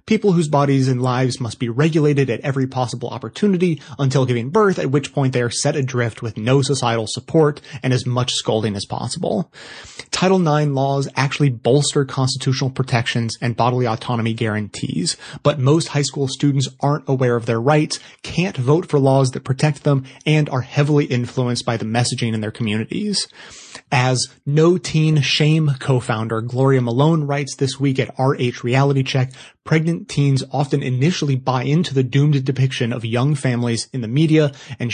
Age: 30-49